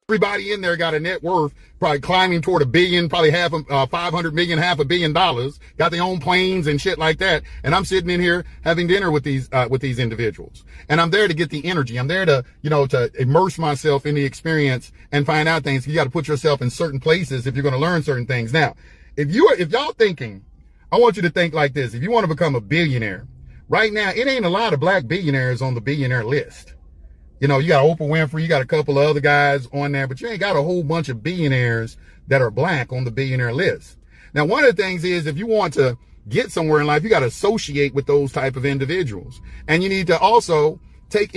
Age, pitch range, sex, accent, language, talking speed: 40-59, 135-175 Hz, male, American, English, 250 wpm